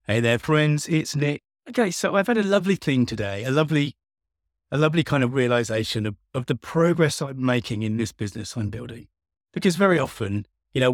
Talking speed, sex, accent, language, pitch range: 195 wpm, male, British, English, 110-150 Hz